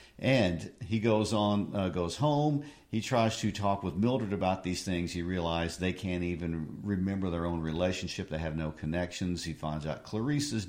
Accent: American